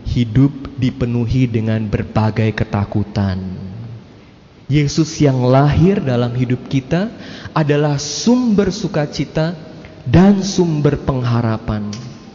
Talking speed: 85 wpm